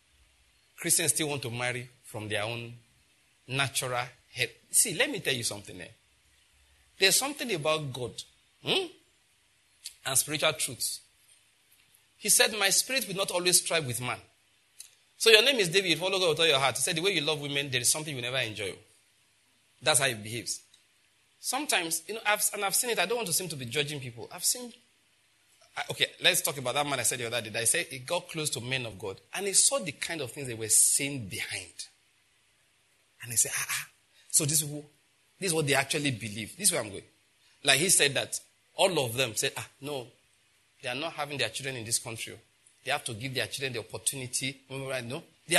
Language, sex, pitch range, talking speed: English, male, 115-175 Hz, 215 wpm